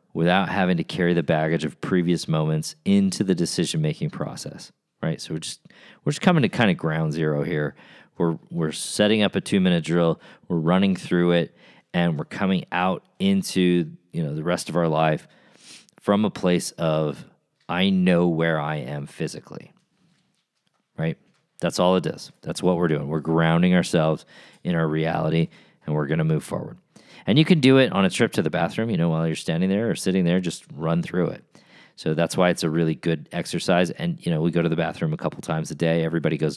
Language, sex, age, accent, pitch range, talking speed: English, male, 40-59, American, 80-95 Hz, 210 wpm